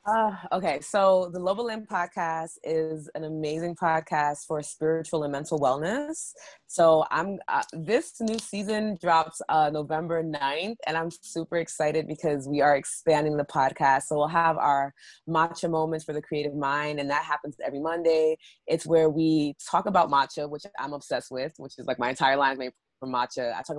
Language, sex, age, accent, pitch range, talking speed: English, female, 20-39, American, 135-160 Hz, 180 wpm